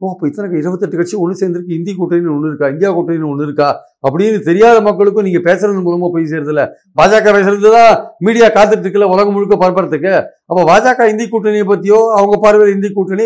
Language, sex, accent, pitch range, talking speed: Tamil, male, native, 170-220 Hz, 170 wpm